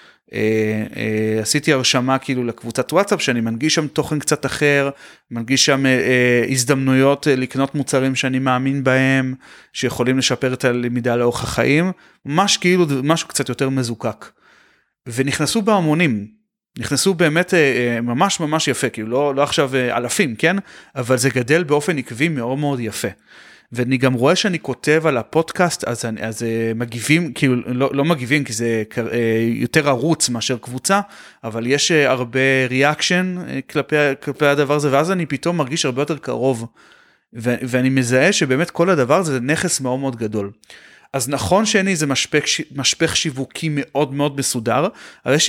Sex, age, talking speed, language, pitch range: male, 30-49, 160 wpm, Hebrew, 125-155 Hz